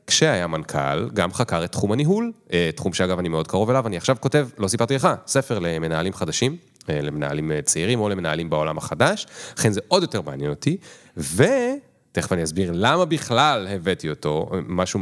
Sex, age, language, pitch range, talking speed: male, 30-49, Hebrew, 90-135 Hz, 170 wpm